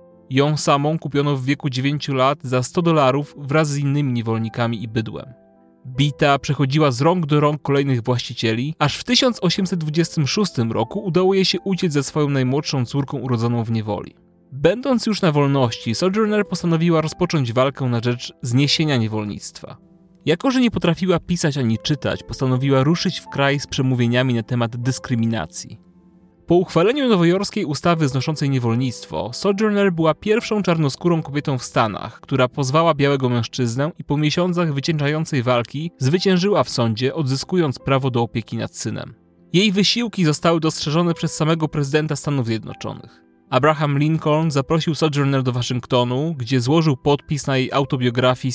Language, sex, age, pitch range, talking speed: Polish, male, 30-49, 125-165 Hz, 145 wpm